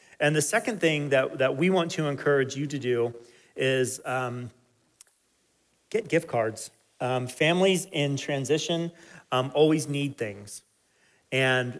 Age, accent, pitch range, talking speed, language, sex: 30-49, American, 125-145 Hz, 135 wpm, English, male